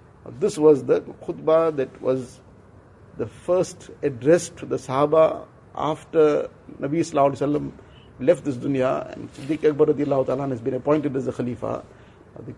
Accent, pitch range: Indian, 130-155 Hz